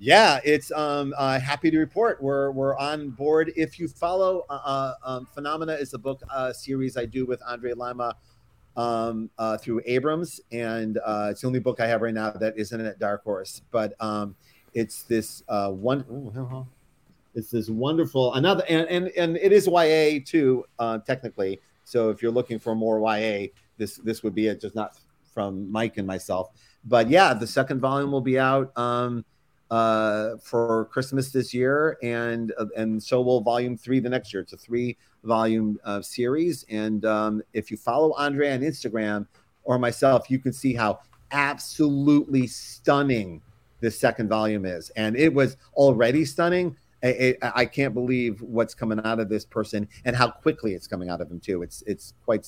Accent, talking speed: American, 185 wpm